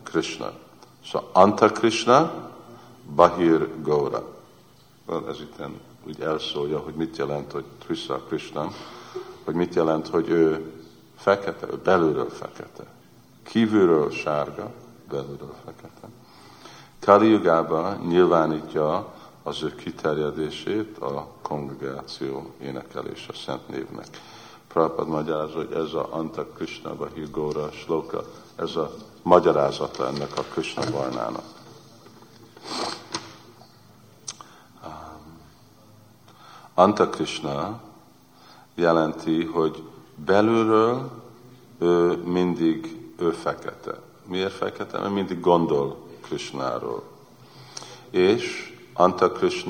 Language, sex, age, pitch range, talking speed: Hungarian, male, 50-69, 80-110 Hz, 85 wpm